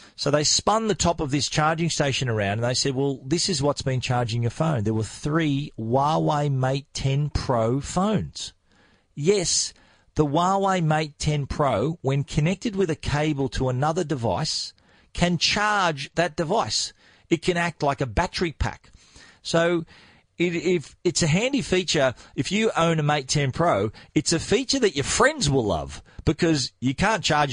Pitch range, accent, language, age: 130-170 Hz, Australian, English, 40-59